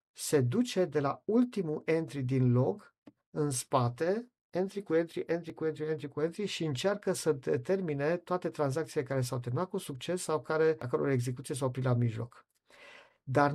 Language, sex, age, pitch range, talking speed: Romanian, male, 50-69, 130-175 Hz, 175 wpm